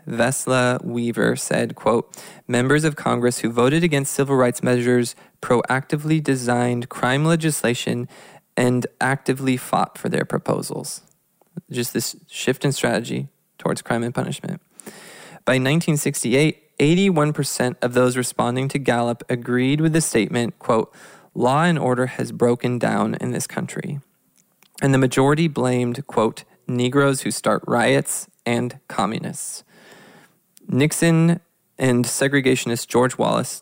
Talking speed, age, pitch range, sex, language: 125 wpm, 20-39, 120-145 Hz, male, English